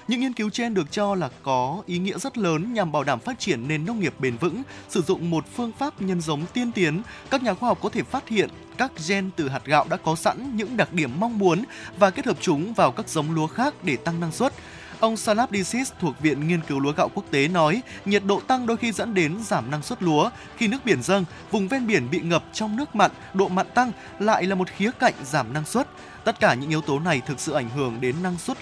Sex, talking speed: male, 260 wpm